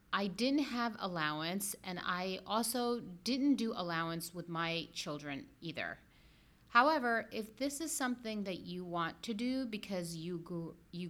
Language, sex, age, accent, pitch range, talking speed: English, female, 30-49, American, 170-230 Hz, 140 wpm